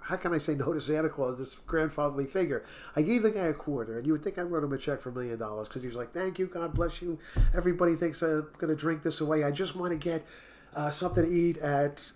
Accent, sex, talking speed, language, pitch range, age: American, male, 275 wpm, English, 145-185 Hz, 40-59